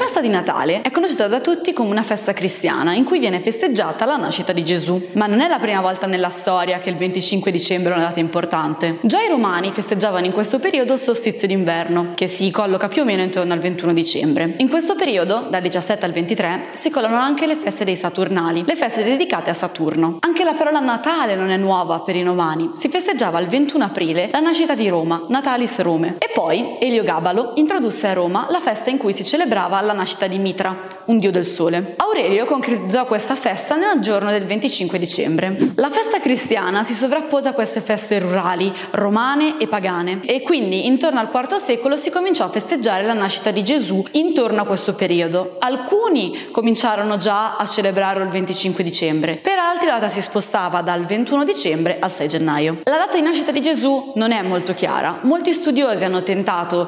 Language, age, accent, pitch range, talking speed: Italian, 20-39, native, 180-265 Hz, 200 wpm